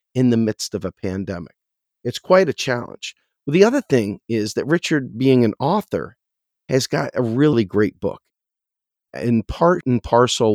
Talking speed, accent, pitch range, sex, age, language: 165 wpm, American, 95-120 Hz, male, 40-59, English